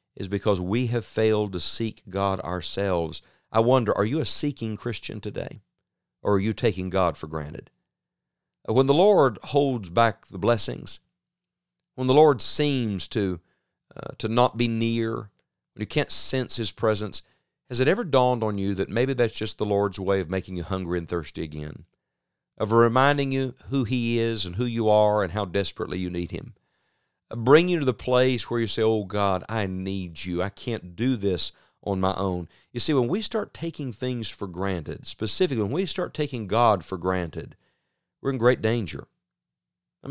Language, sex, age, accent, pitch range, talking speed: English, male, 40-59, American, 95-125 Hz, 185 wpm